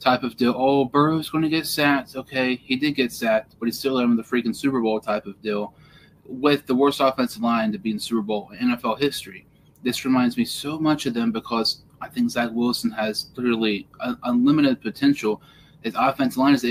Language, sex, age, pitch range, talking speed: English, male, 20-39, 115-155 Hz, 210 wpm